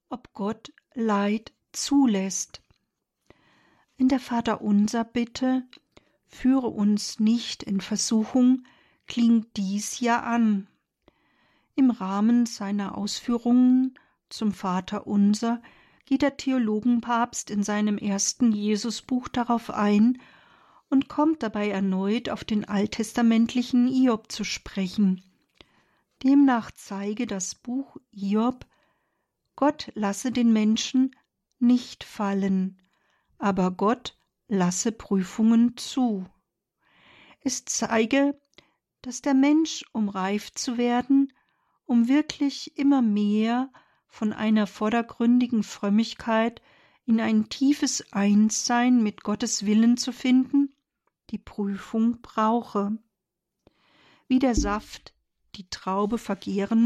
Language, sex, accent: German, female, German